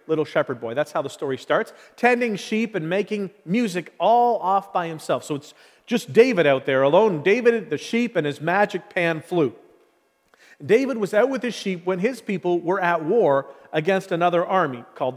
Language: English